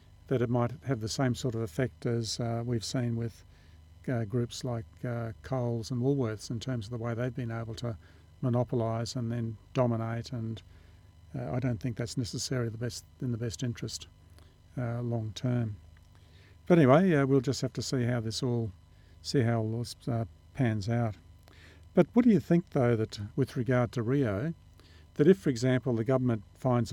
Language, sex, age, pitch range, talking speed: English, male, 50-69, 90-125 Hz, 190 wpm